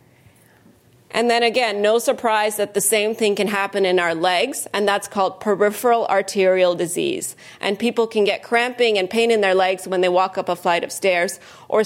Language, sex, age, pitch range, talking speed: English, female, 30-49, 190-220 Hz, 195 wpm